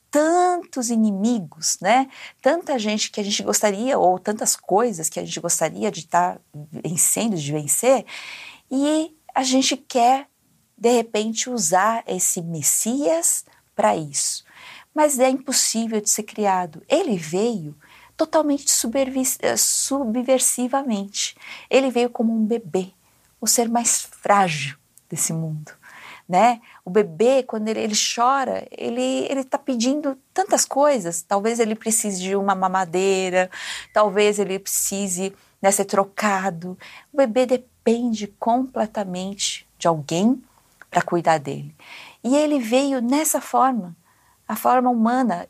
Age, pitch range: 50-69, 190-260 Hz